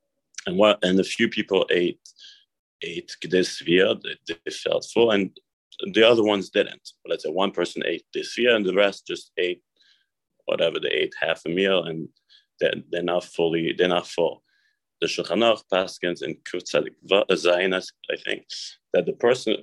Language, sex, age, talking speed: English, male, 30-49, 175 wpm